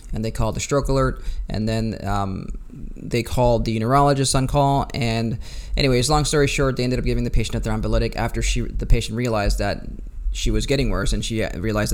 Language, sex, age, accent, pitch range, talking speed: English, male, 20-39, American, 105-125 Hz, 205 wpm